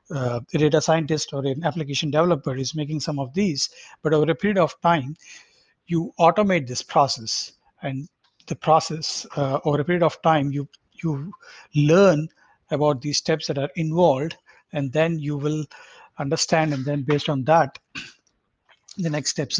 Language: English